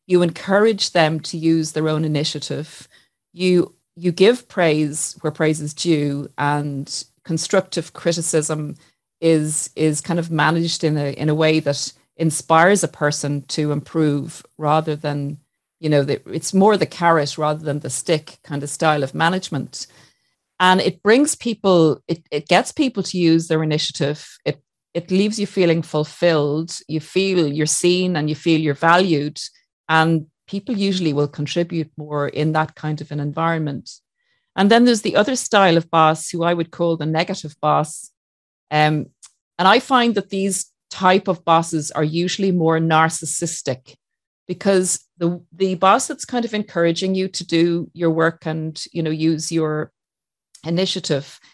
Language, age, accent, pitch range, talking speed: English, 30-49, Irish, 150-180 Hz, 160 wpm